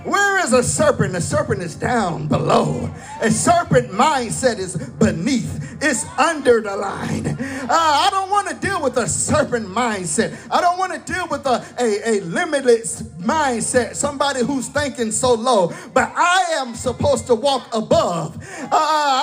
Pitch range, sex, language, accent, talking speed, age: 230-290 Hz, male, English, American, 160 wpm, 40-59